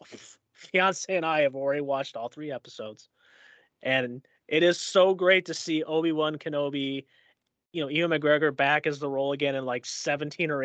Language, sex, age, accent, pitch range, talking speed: English, male, 30-49, American, 140-185 Hz, 175 wpm